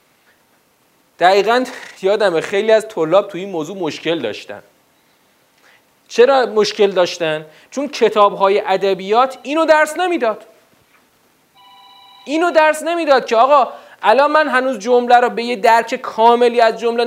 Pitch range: 180-255 Hz